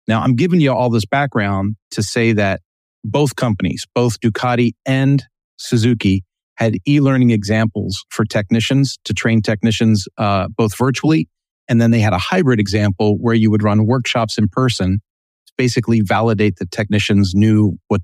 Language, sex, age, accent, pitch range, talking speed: English, male, 40-59, American, 105-120 Hz, 160 wpm